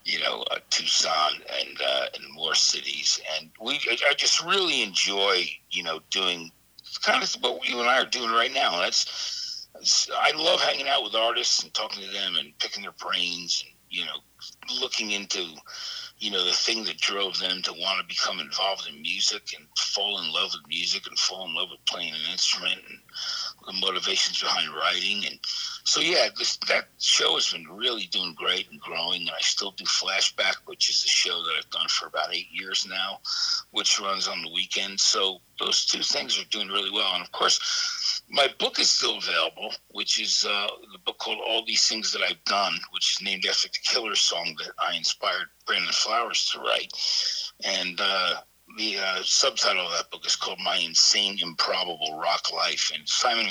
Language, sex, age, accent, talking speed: English, male, 60-79, American, 195 wpm